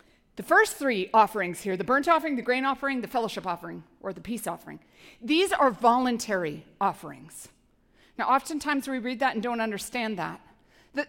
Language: English